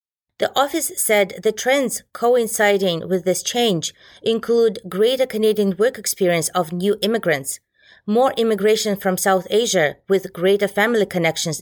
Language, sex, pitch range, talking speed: English, female, 170-225 Hz, 135 wpm